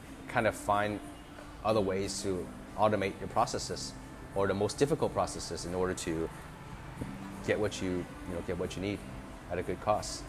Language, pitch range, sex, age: English, 90-110 Hz, male, 30-49